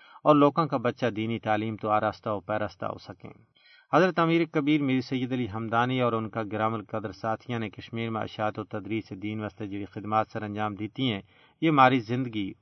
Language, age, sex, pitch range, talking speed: Urdu, 40-59, male, 110-130 Hz, 210 wpm